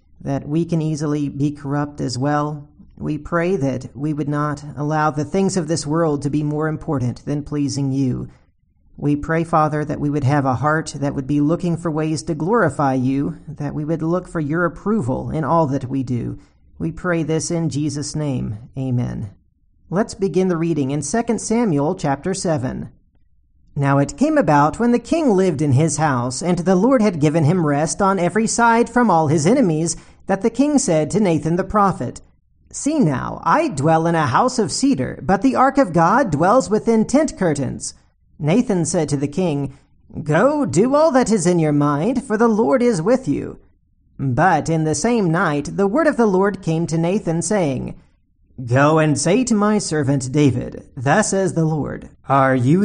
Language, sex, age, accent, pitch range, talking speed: English, male, 40-59, American, 145-195 Hz, 195 wpm